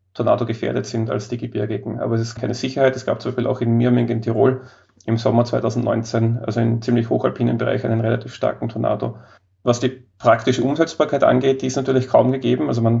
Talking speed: 205 wpm